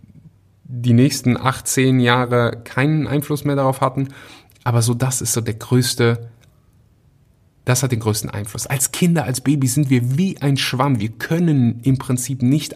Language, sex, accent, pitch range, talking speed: German, male, German, 115-145 Hz, 165 wpm